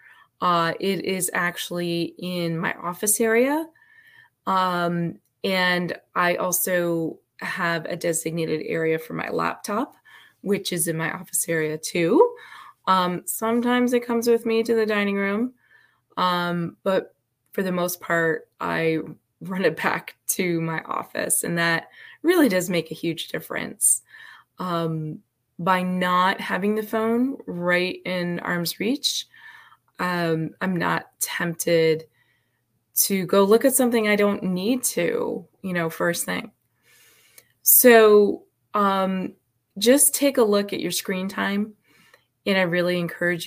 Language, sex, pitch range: English, female, 170-225 Hz